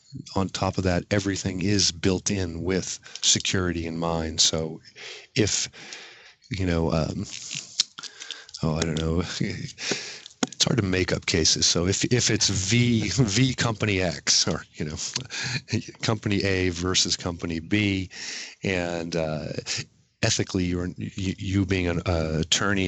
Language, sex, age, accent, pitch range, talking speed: English, male, 40-59, American, 85-100 Hz, 135 wpm